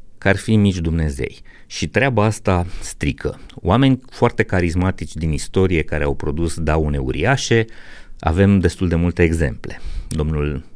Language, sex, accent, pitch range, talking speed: Romanian, male, native, 75-95 Hz, 135 wpm